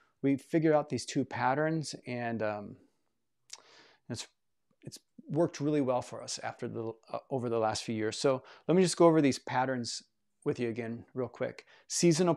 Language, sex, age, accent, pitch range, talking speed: English, male, 30-49, American, 120-140 Hz, 180 wpm